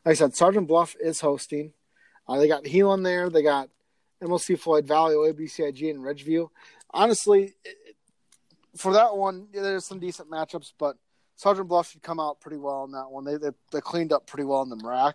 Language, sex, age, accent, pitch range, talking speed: English, male, 30-49, American, 140-175 Hz, 200 wpm